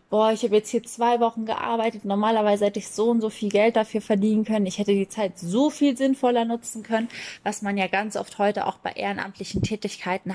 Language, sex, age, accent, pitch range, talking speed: German, female, 20-39, German, 190-220 Hz, 220 wpm